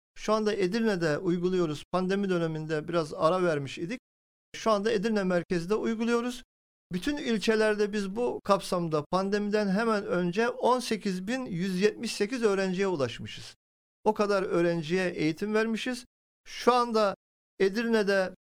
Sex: male